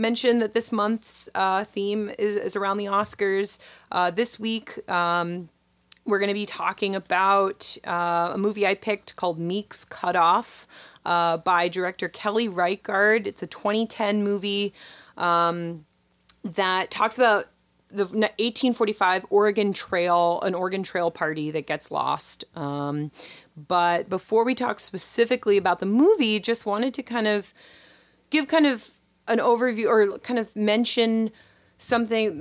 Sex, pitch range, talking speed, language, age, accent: female, 170-215 Hz, 145 wpm, English, 30-49, American